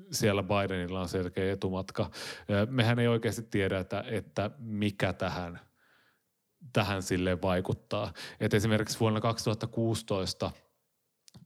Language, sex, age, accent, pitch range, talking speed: Finnish, male, 30-49, native, 95-120 Hz, 100 wpm